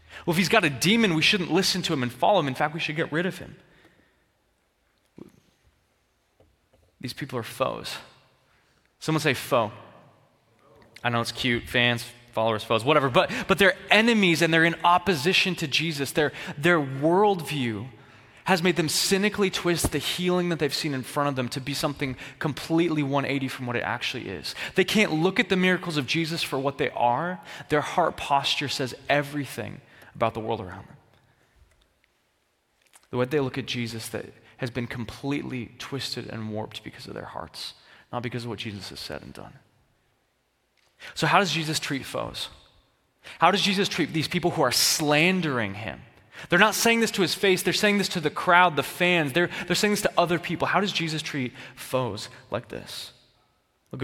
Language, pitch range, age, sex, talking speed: English, 120-175 Hz, 20-39, male, 185 wpm